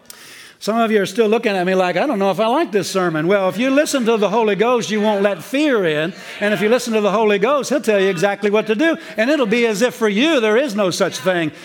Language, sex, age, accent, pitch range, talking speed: English, male, 60-79, American, 180-215 Hz, 295 wpm